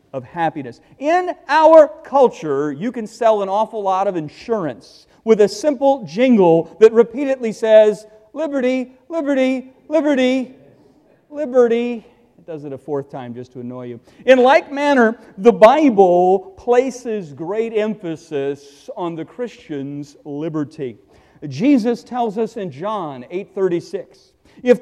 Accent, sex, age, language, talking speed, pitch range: American, male, 50-69, English, 130 wpm, 175-260 Hz